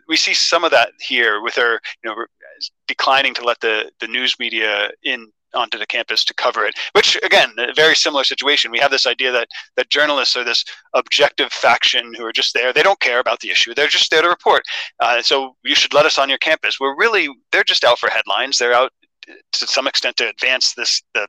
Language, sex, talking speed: English, male, 230 wpm